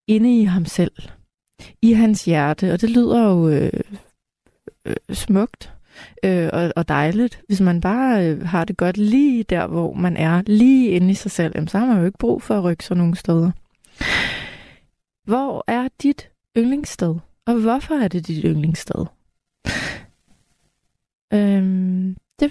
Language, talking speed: Danish, 145 wpm